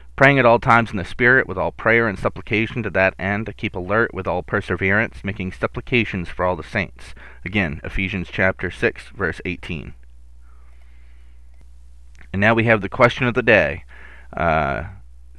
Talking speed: 170 wpm